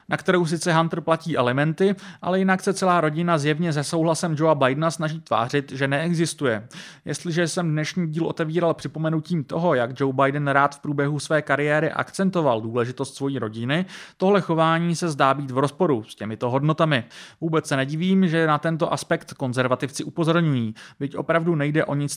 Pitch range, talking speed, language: 140-170 Hz, 170 wpm, Czech